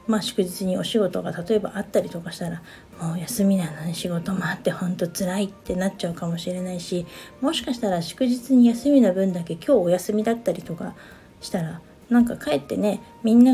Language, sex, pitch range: Japanese, female, 185-230 Hz